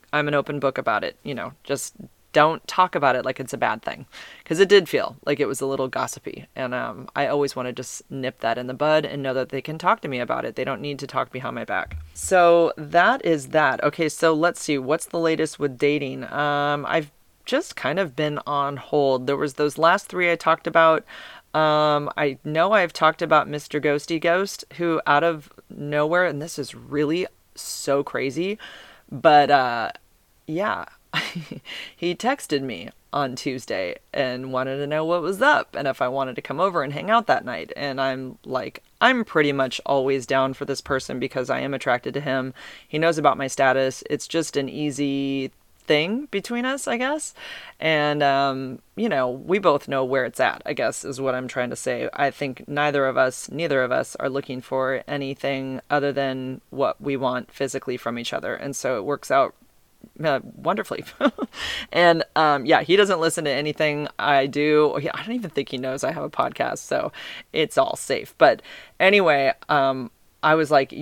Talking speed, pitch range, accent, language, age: 205 wpm, 135-165 Hz, American, English, 30-49